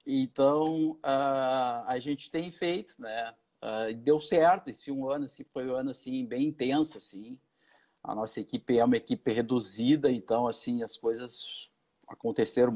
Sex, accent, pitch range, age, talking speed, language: male, Brazilian, 130-175 Hz, 50-69, 155 wpm, Portuguese